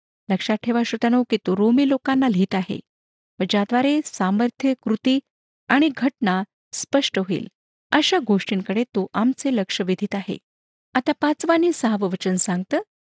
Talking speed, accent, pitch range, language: 130 wpm, native, 195-260 Hz, Marathi